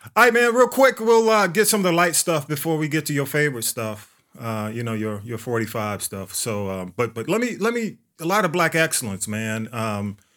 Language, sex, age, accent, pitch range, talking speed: English, male, 30-49, American, 110-140 Hz, 245 wpm